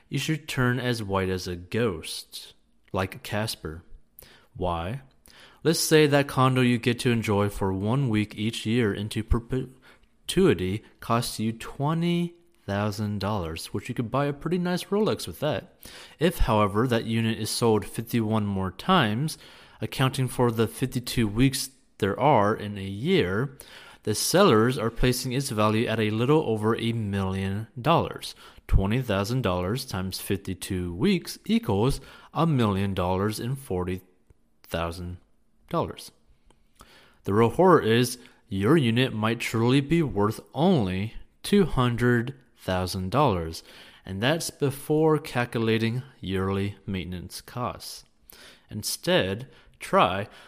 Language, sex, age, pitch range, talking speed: English, male, 30-49, 100-130 Hz, 130 wpm